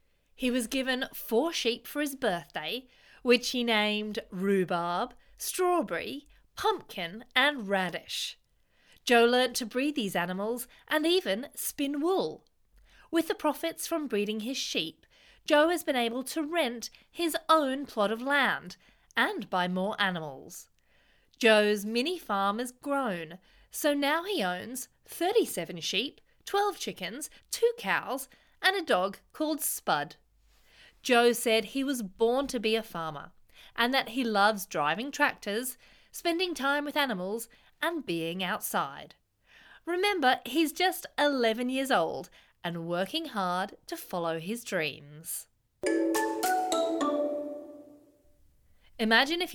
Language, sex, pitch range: English, female, 210-305 Hz